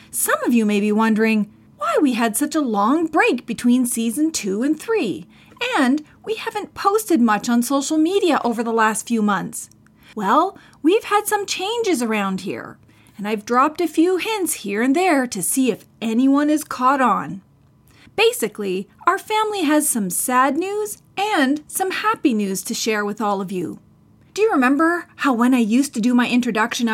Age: 30-49